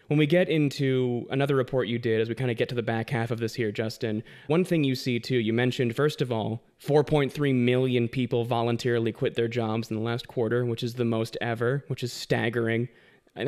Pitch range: 115-135 Hz